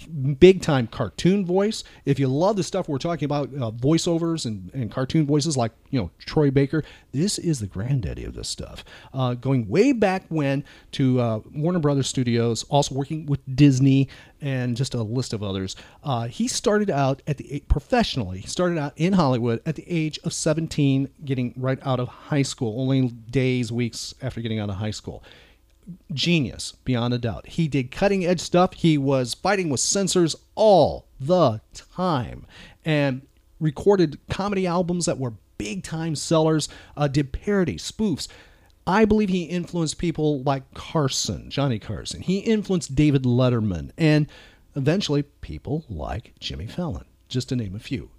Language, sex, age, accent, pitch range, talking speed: English, male, 40-59, American, 120-165 Hz, 165 wpm